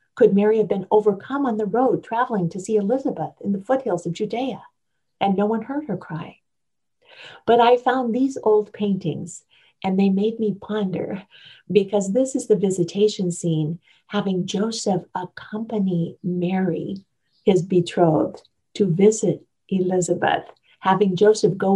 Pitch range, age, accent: 185-215 Hz, 50-69, American